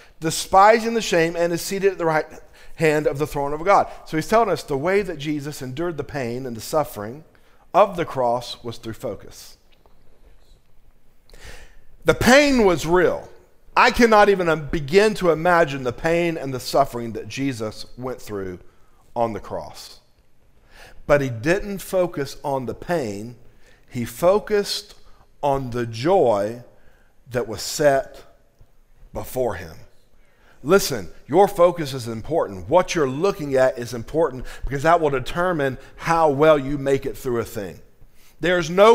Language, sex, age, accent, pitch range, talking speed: English, male, 50-69, American, 135-185 Hz, 155 wpm